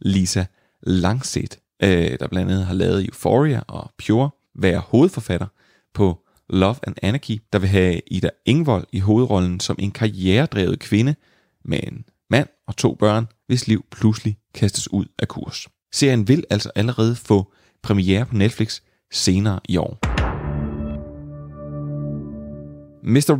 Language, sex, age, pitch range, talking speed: Danish, male, 30-49, 95-115 Hz, 135 wpm